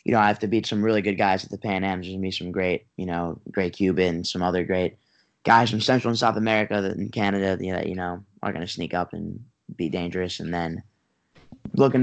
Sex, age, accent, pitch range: male, 10-29, American, 95-110 Hz